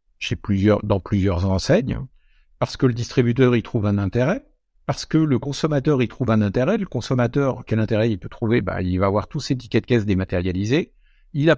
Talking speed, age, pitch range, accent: 205 wpm, 50-69, 105-155 Hz, French